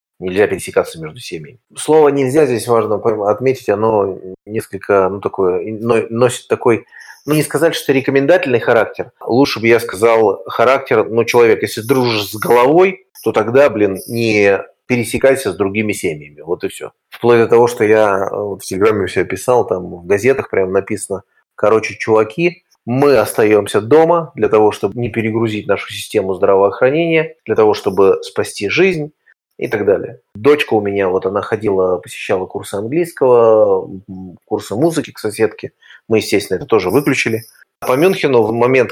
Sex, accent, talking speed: male, native, 160 wpm